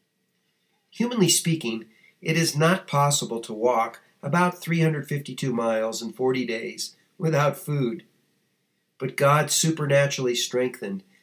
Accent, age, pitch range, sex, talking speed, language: American, 50-69, 125-175 Hz, male, 105 wpm, English